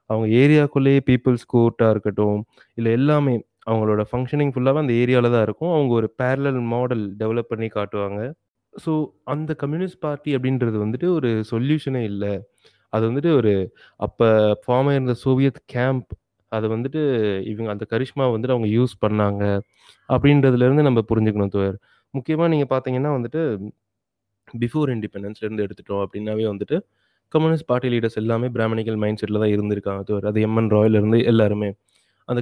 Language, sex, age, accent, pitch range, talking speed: Tamil, male, 20-39, native, 105-130 Hz, 145 wpm